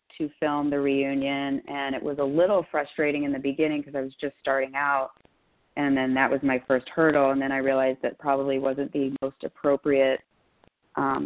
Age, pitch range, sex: 30-49, 135-155 Hz, female